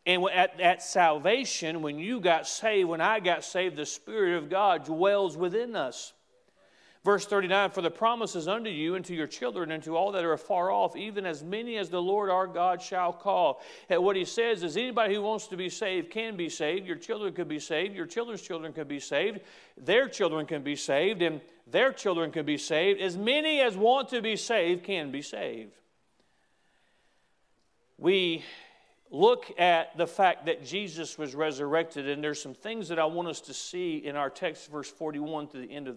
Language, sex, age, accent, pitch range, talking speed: English, male, 40-59, American, 165-210 Hz, 205 wpm